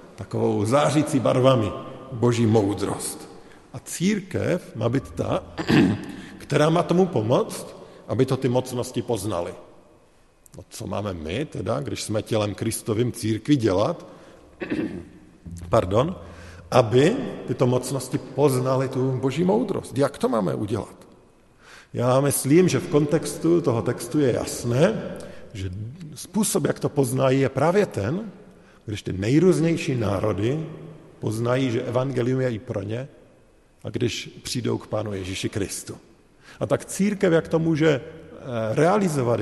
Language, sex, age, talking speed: Slovak, male, 50-69, 130 wpm